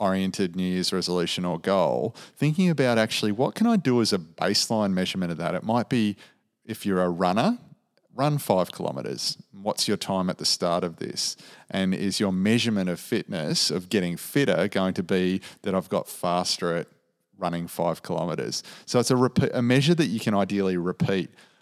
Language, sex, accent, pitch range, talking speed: English, male, Australian, 90-120 Hz, 185 wpm